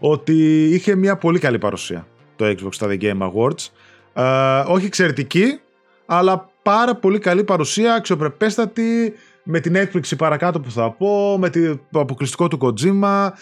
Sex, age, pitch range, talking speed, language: male, 20-39, 130-185 Hz, 150 wpm, Greek